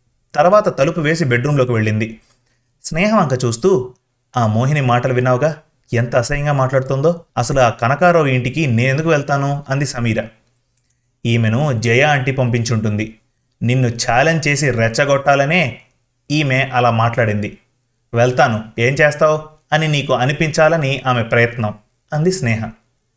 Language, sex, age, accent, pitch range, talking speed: Telugu, male, 30-49, native, 115-145 Hz, 115 wpm